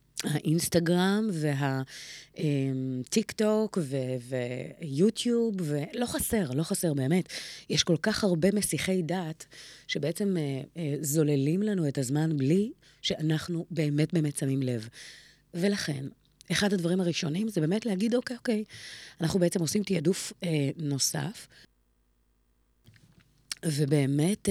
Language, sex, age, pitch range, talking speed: Hebrew, female, 30-49, 140-190 Hz, 115 wpm